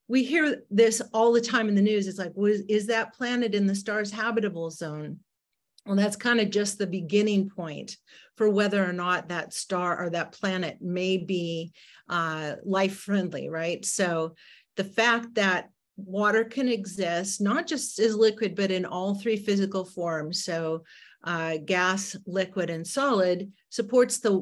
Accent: American